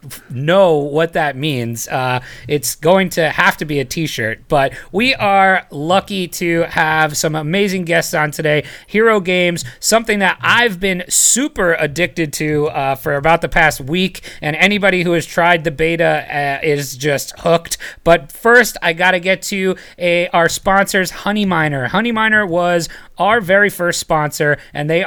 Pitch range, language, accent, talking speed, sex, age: 150-180 Hz, English, American, 165 wpm, male, 30-49